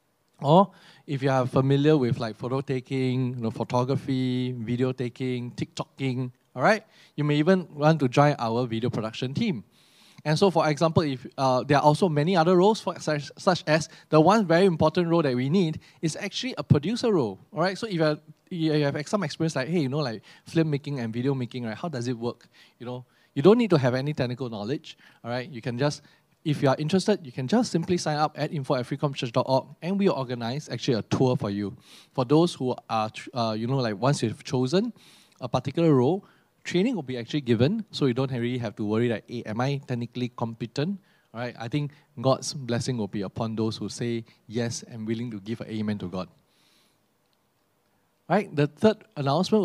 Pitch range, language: 125-165 Hz, English